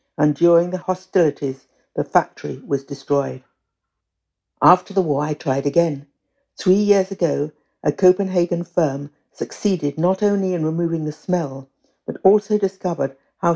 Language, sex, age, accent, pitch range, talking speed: English, female, 60-79, British, 150-185 Hz, 135 wpm